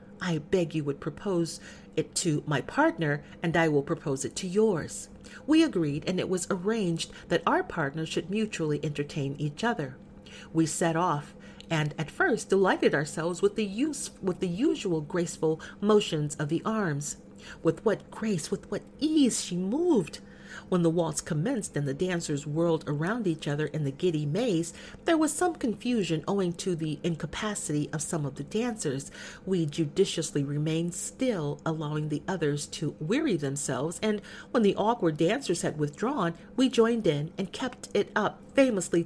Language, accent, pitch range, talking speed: English, American, 160-210 Hz, 165 wpm